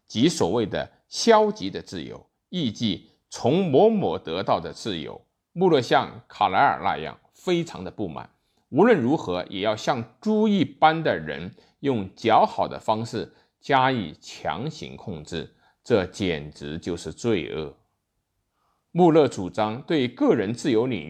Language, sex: Chinese, male